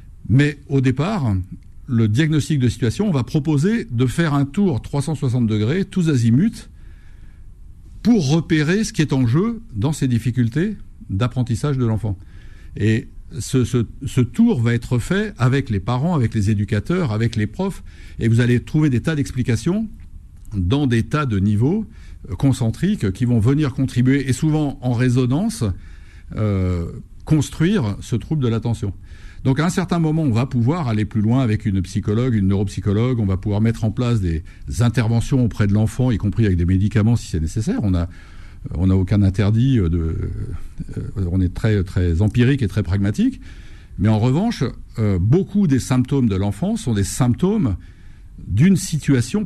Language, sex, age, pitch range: French, male, 60-79, 100-140 Hz